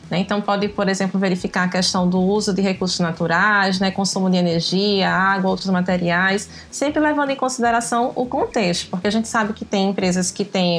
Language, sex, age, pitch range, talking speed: Portuguese, female, 20-39, 185-230 Hz, 190 wpm